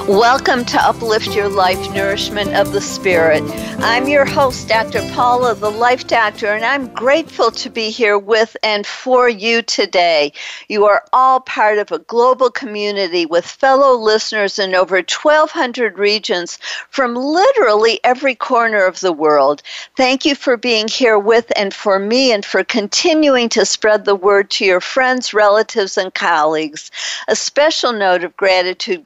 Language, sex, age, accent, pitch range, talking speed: English, female, 50-69, American, 190-250 Hz, 160 wpm